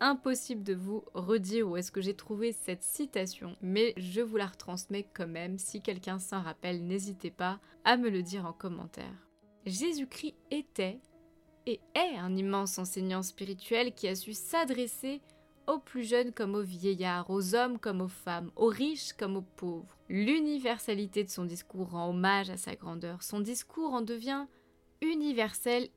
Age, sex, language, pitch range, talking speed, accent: 20-39, female, French, 185-250 Hz, 165 wpm, French